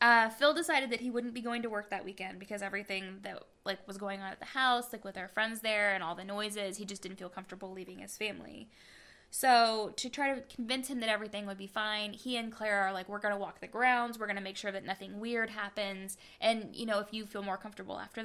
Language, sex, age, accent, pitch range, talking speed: English, female, 10-29, American, 200-240 Hz, 260 wpm